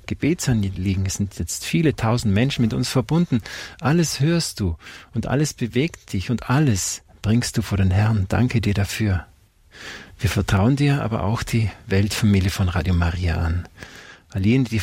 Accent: German